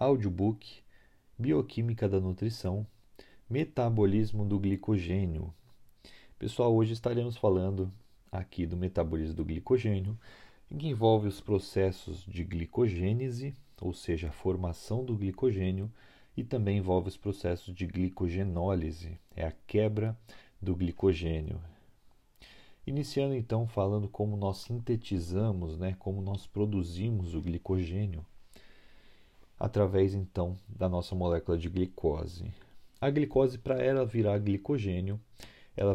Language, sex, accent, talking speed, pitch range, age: Portuguese, male, Brazilian, 110 wpm, 90-110 Hz, 40-59